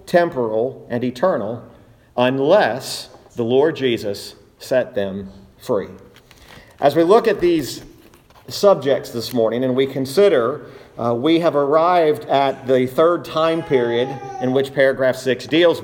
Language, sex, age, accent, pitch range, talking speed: English, male, 50-69, American, 130-165 Hz, 135 wpm